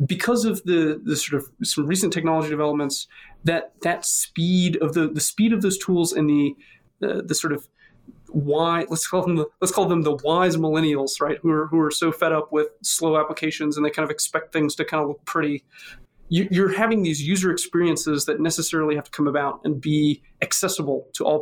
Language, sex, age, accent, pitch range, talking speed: English, male, 30-49, American, 150-180 Hz, 215 wpm